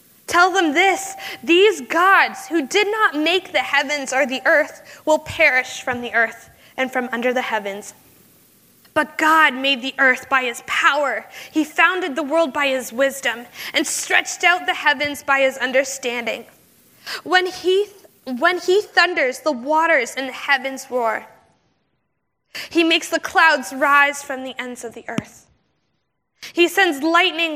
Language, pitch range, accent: English, 255-330 Hz, American